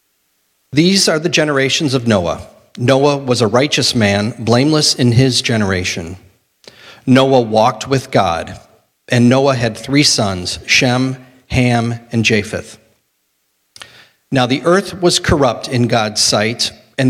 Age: 40-59